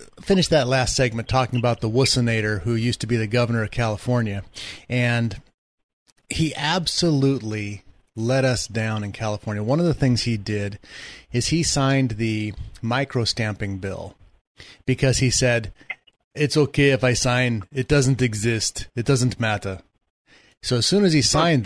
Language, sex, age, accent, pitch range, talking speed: English, male, 30-49, American, 110-135 Hz, 160 wpm